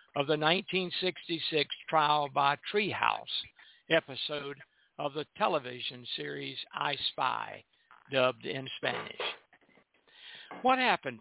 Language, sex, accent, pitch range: English, male, American, 135-155 Hz